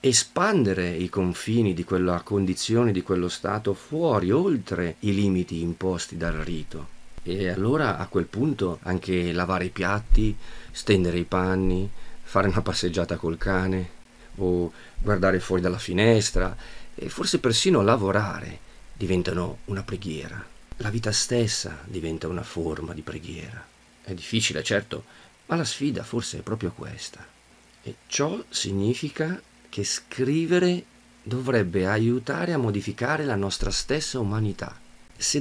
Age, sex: 40-59, male